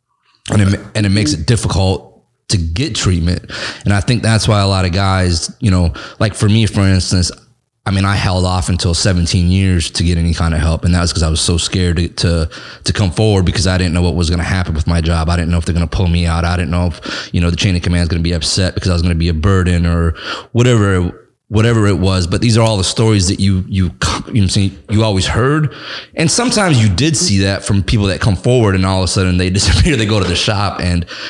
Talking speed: 275 wpm